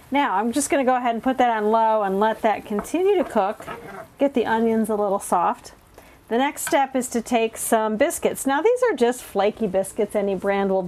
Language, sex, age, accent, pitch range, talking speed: English, female, 40-59, American, 200-245 Hz, 220 wpm